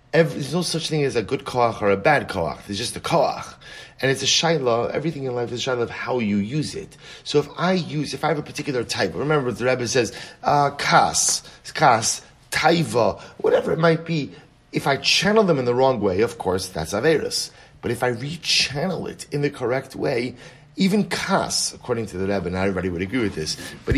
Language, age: English, 30-49